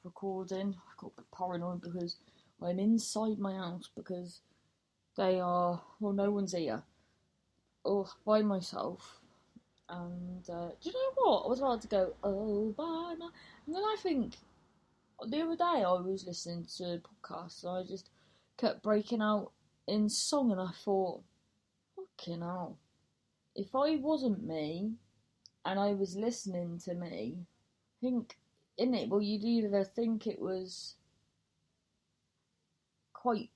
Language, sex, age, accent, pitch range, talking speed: English, female, 20-39, British, 180-225 Hz, 150 wpm